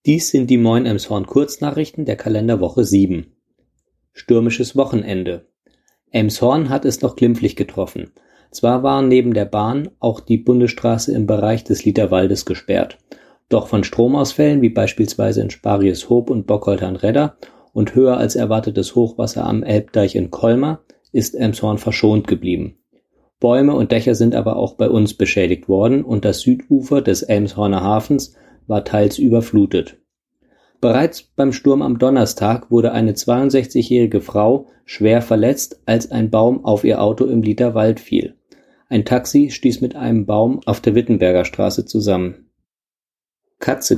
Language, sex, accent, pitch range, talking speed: German, male, German, 105-130 Hz, 140 wpm